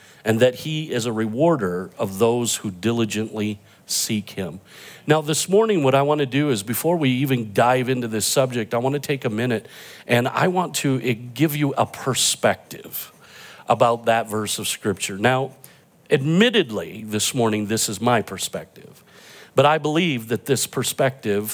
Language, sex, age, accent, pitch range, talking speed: English, male, 50-69, American, 115-155 Hz, 170 wpm